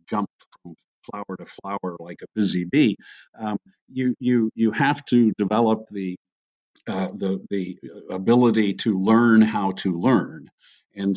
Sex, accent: male, American